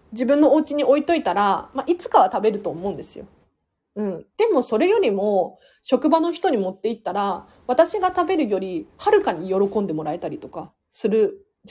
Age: 40-59